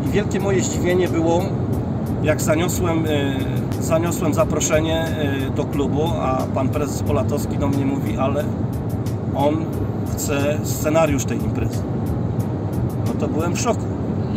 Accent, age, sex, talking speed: native, 40-59, male, 120 wpm